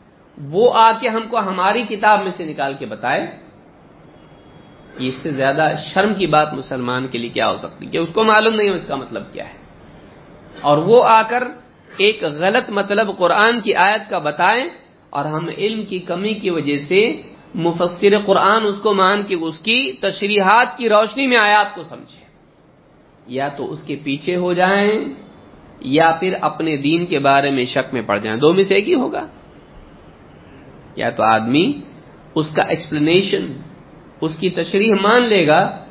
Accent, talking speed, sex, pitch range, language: Indian, 140 wpm, male, 160-210 Hz, English